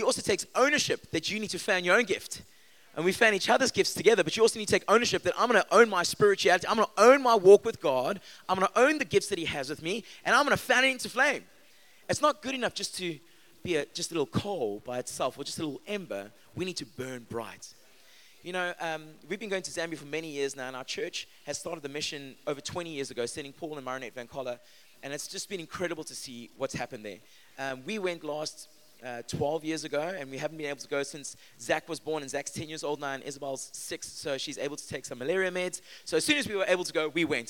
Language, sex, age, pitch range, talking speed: English, male, 20-39, 140-190 Hz, 270 wpm